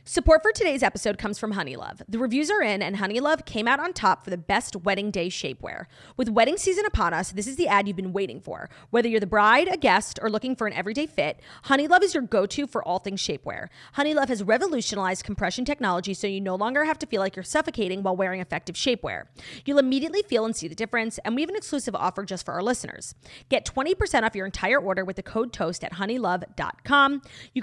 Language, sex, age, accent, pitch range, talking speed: English, female, 30-49, American, 195-275 Hz, 235 wpm